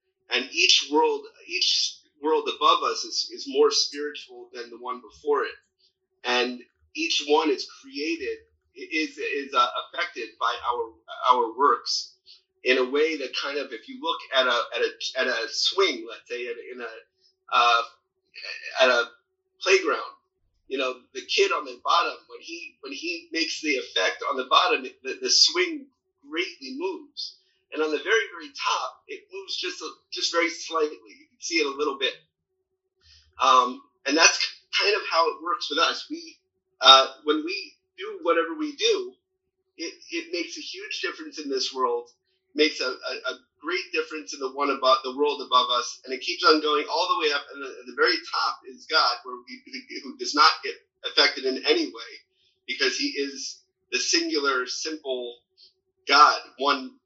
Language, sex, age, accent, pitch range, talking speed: English, male, 40-59, American, 305-400 Hz, 180 wpm